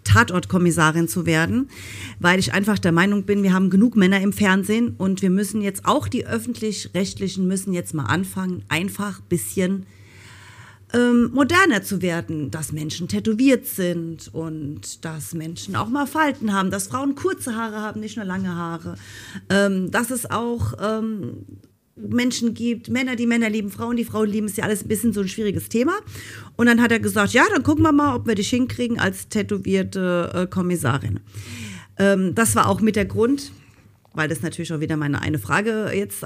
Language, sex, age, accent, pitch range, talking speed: German, female, 40-59, German, 160-220 Hz, 180 wpm